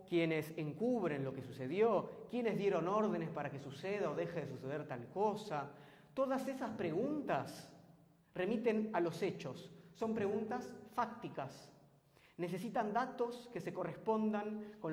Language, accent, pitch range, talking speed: Spanish, Argentinian, 155-215 Hz, 135 wpm